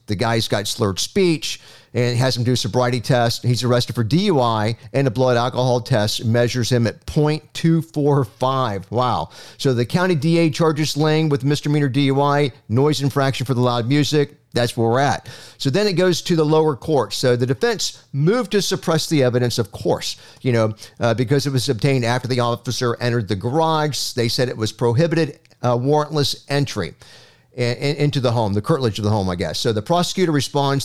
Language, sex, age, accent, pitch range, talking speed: English, male, 50-69, American, 120-145 Hz, 190 wpm